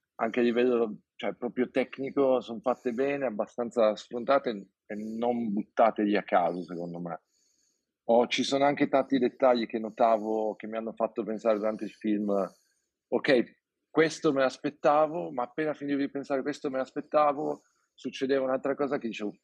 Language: Italian